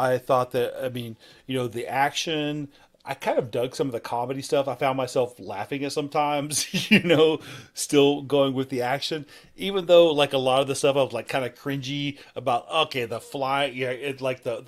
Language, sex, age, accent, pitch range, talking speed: English, male, 40-59, American, 125-150 Hz, 215 wpm